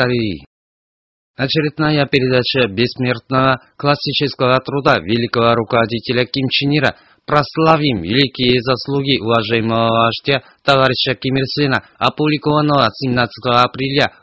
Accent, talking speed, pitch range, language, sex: native, 90 wpm, 120-150 Hz, Russian, male